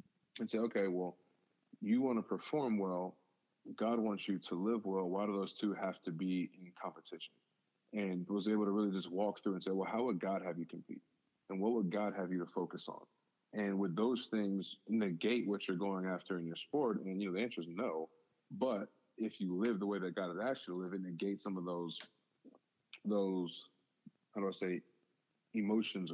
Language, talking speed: English, 215 wpm